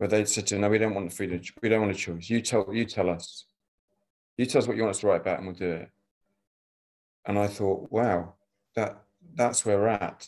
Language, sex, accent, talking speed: English, male, British, 245 wpm